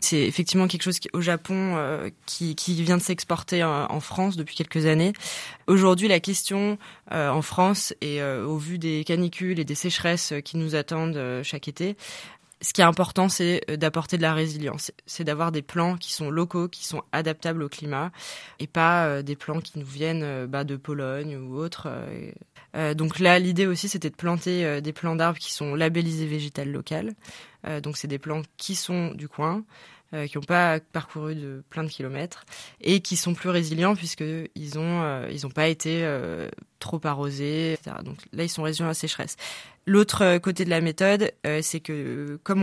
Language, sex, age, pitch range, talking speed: French, female, 20-39, 150-175 Hz, 175 wpm